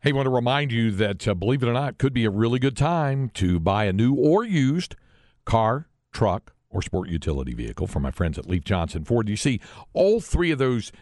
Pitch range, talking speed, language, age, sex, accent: 100-145 Hz, 240 wpm, English, 50-69, male, American